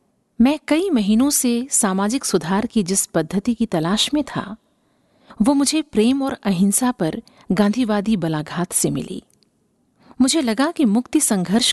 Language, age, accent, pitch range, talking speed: Hindi, 50-69, native, 195-250 Hz, 145 wpm